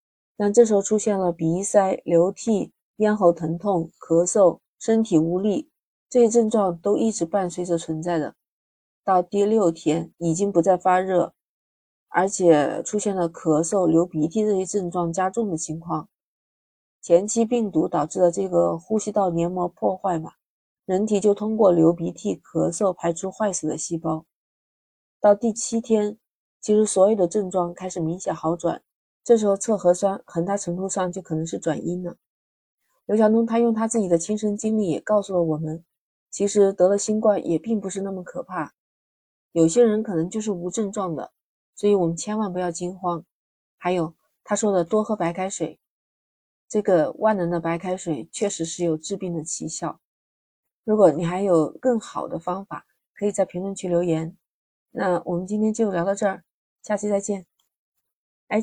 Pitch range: 170-210 Hz